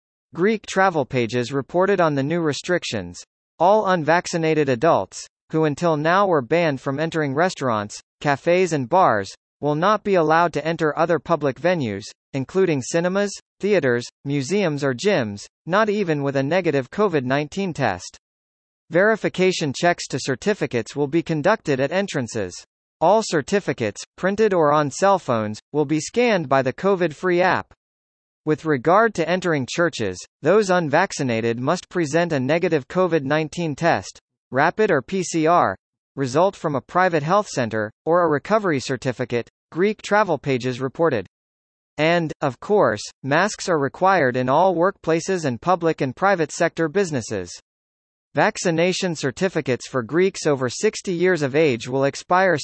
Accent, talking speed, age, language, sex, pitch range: American, 140 wpm, 40-59, English, male, 130-180 Hz